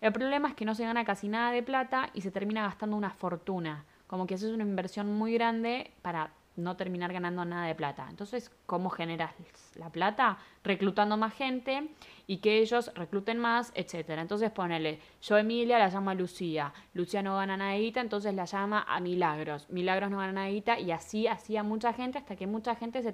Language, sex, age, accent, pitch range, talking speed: Spanish, female, 10-29, Argentinian, 180-230 Hz, 200 wpm